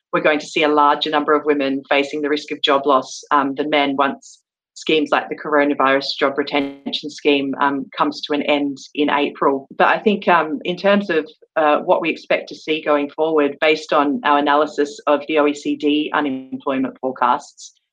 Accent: Australian